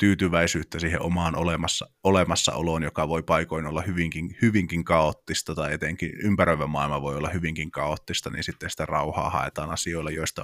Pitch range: 80-90 Hz